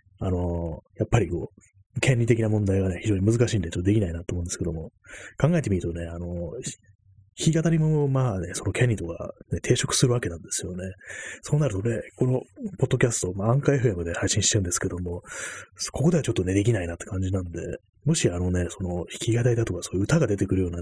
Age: 30-49